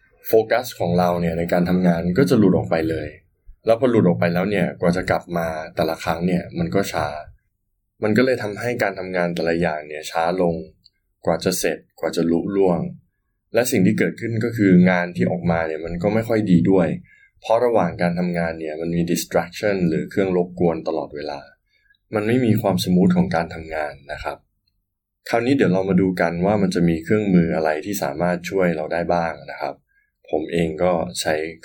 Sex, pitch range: male, 80-100 Hz